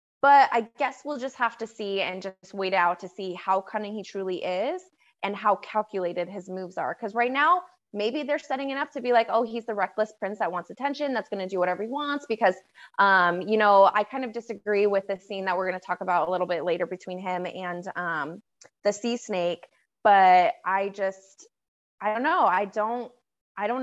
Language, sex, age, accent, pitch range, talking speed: English, female, 20-39, American, 190-235 Hz, 225 wpm